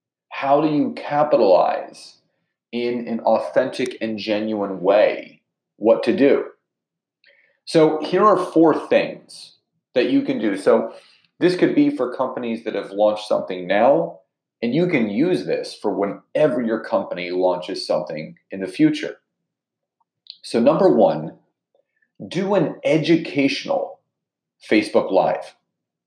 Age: 30-49